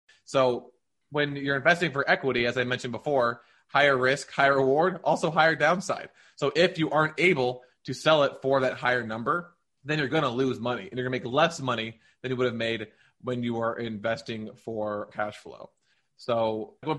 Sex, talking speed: male, 195 wpm